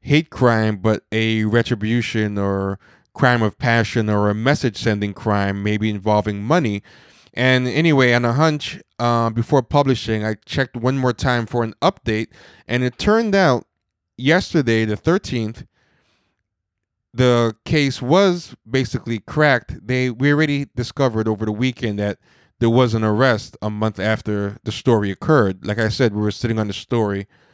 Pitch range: 105-125 Hz